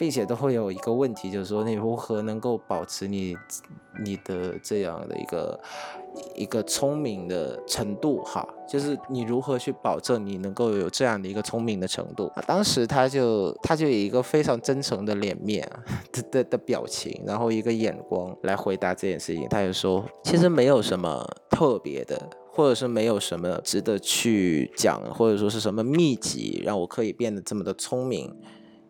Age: 20-39